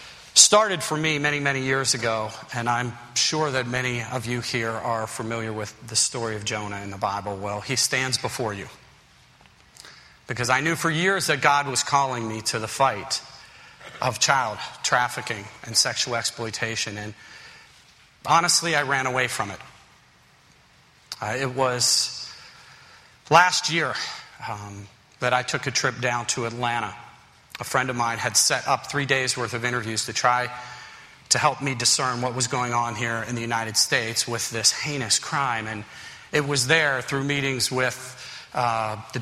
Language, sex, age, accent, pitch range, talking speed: English, male, 40-59, American, 115-140 Hz, 170 wpm